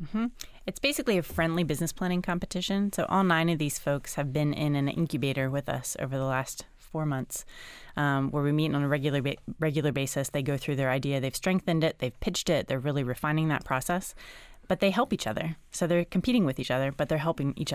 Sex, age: female, 20-39